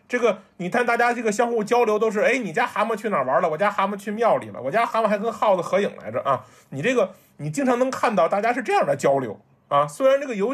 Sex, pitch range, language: male, 150-220 Hz, Chinese